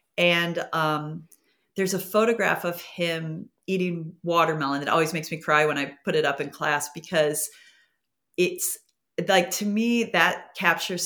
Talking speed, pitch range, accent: 150 wpm, 150-185 Hz, American